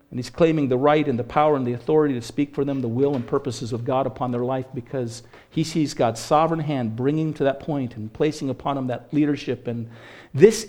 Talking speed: 235 wpm